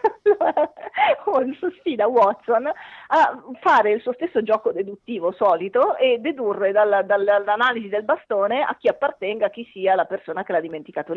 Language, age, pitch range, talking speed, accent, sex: Italian, 40-59, 215-335 Hz, 135 wpm, native, female